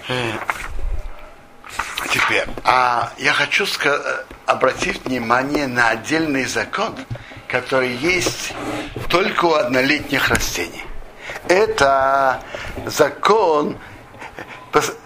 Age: 60-79